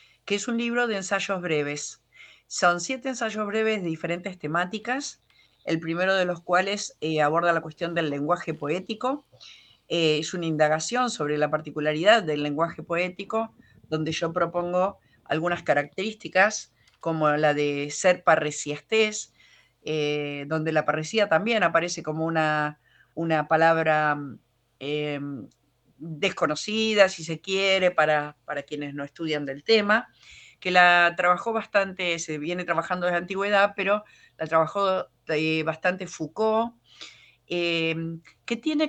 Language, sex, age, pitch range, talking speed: Spanish, female, 50-69, 155-210 Hz, 135 wpm